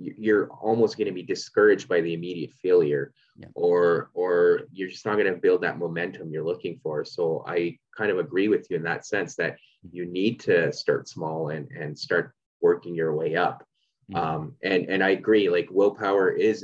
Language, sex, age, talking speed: English, male, 20-39, 195 wpm